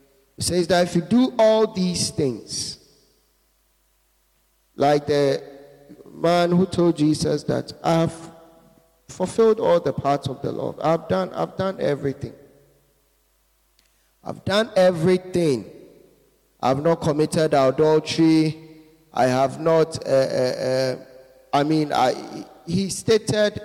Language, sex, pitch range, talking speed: English, male, 130-165 Hz, 120 wpm